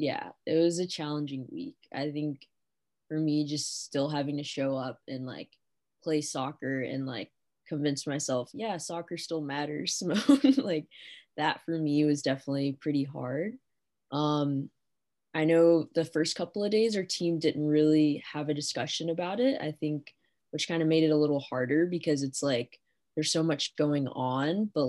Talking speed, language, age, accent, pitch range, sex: 175 wpm, English, 20-39, American, 140-160 Hz, female